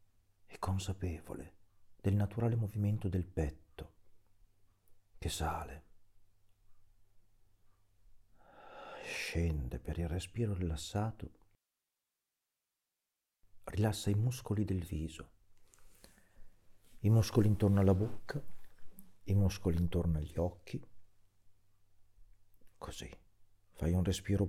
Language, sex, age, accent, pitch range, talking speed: Italian, male, 50-69, native, 85-100 Hz, 80 wpm